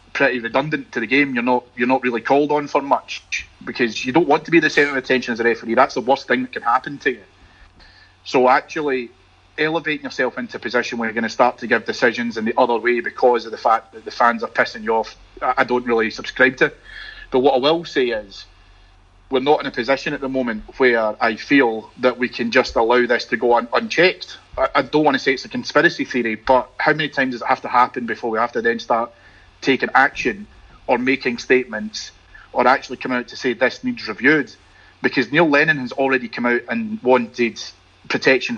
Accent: British